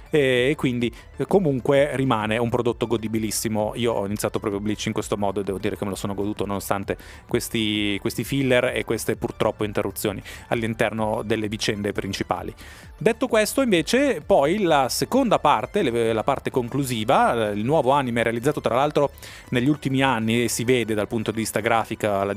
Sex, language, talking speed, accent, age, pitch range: male, Italian, 170 wpm, native, 30-49, 110-135 Hz